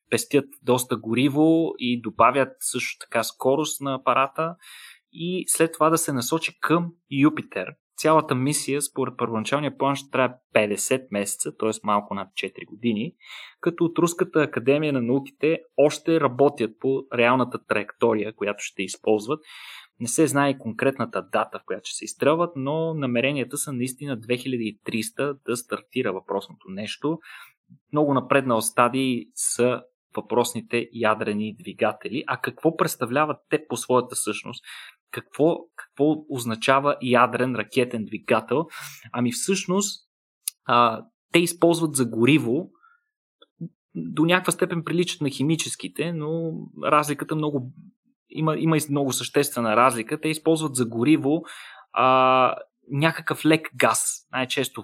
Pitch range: 120-155 Hz